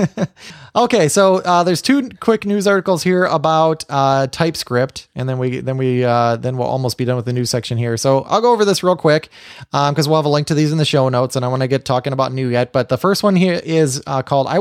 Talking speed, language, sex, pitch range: 265 wpm, English, male, 125-155 Hz